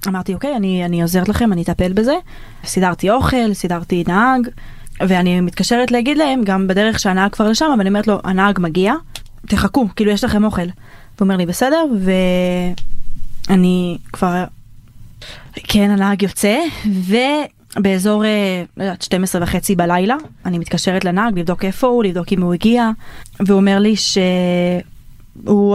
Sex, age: female, 20-39